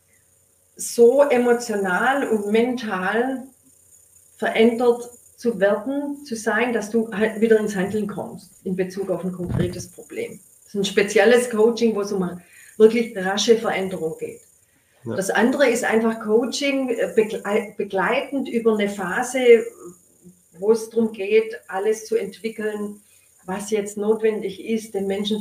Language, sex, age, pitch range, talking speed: German, female, 40-59, 185-225 Hz, 130 wpm